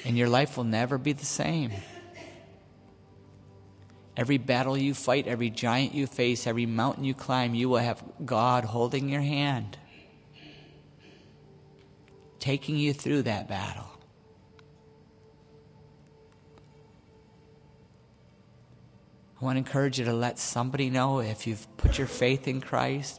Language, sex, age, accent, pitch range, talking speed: English, male, 50-69, American, 110-135 Hz, 125 wpm